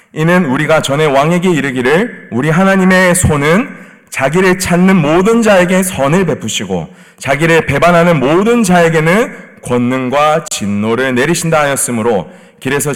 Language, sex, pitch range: Korean, male, 125-185 Hz